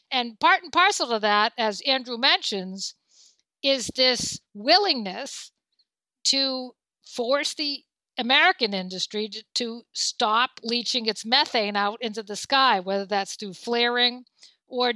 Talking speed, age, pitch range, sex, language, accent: 125 wpm, 50-69, 220-260 Hz, female, English, American